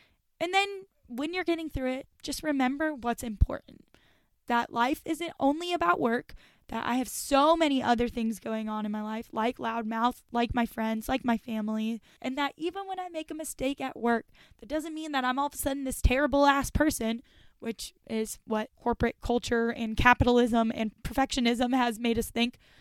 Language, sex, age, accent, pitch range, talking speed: English, female, 10-29, American, 230-285 Hz, 190 wpm